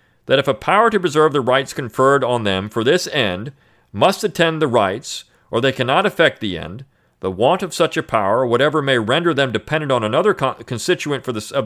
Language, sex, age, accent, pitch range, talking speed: English, male, 40-59, American, 110-165 Hz, 215 wpm